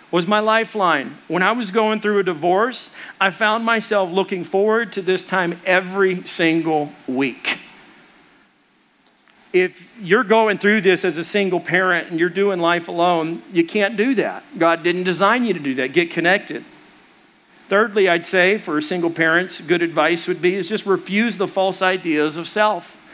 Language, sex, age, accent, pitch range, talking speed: English, male, 50-69, American, 170-205 Hz, 175 wpm